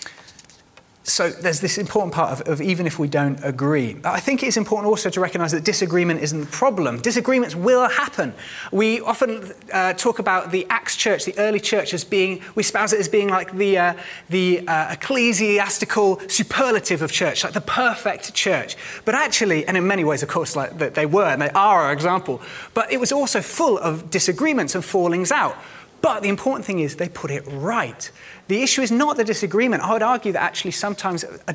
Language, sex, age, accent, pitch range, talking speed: English, male, 30-49, British, 170-225 Hz, 205 wpm